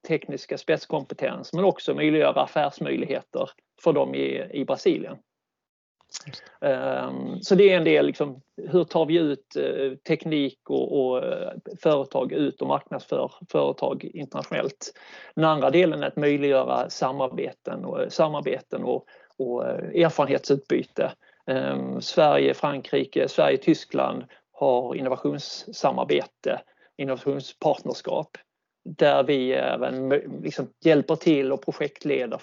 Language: Swedish